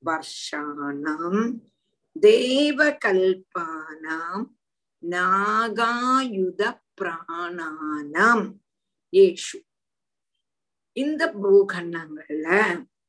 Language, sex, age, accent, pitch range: Tamil, female, 50-69, native, 190-295 Hz